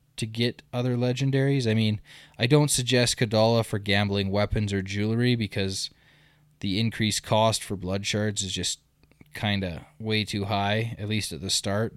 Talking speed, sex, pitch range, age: 170 wpm, male, 100-125 Hz, 20-39